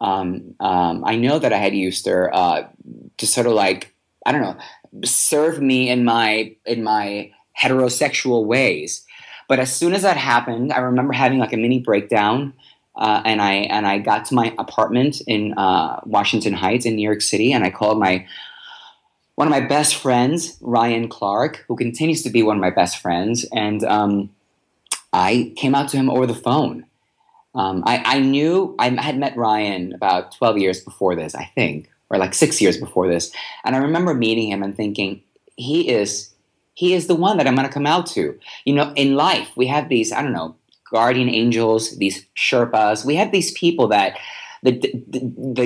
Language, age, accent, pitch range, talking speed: English, 30-49, American, 105-145 Hz, 195 wpm